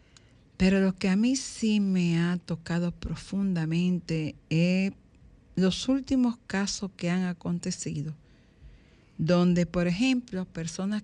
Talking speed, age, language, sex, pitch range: 115 wpm, 50-69, Spanish, female, 165-205 Hz